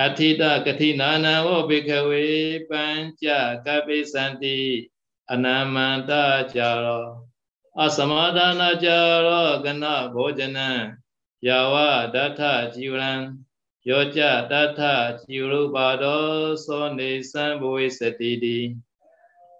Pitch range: 130-155 Hz